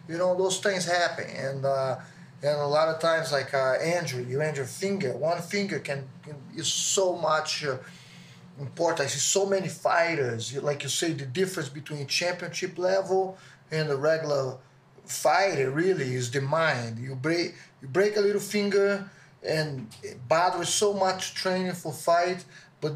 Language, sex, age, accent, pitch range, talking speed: English, male, 20-39, Brazilian, 130-170 Hz, 165 wpm